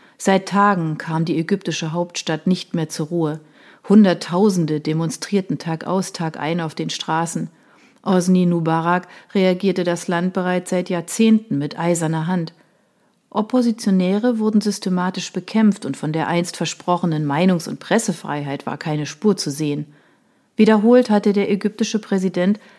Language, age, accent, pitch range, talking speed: German, 40-59, German, 165-200 Hz, 135 wpm